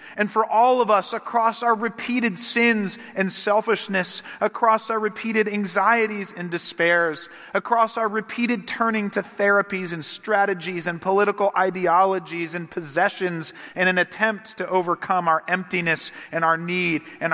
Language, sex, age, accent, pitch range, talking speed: English, male, 40-59, American, 160-215 Hz, 140 wpm